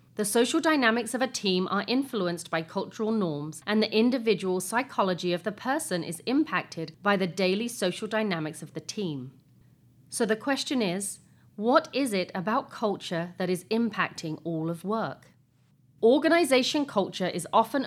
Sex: female